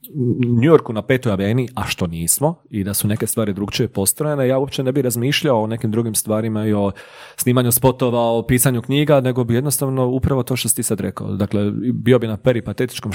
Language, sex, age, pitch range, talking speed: Croatian, male, 30-49, 105-130 Hz, 210 wpm